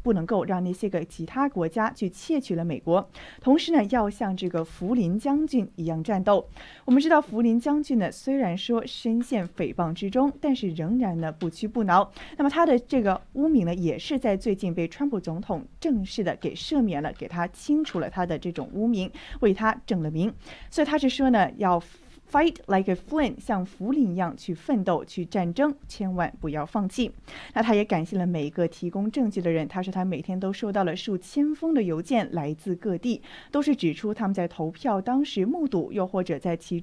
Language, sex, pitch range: Chinese, female, 175-250 Hz